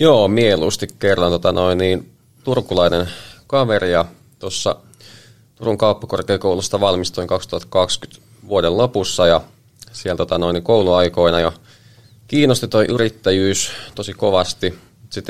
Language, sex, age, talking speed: Finnish, male, 20-39, 100 wpm